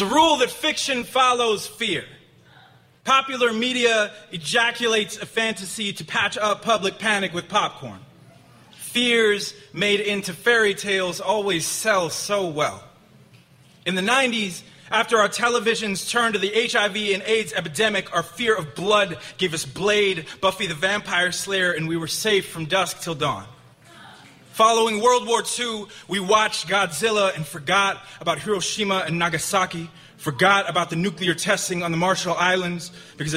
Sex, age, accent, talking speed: male, 20-39, American, 145 wpm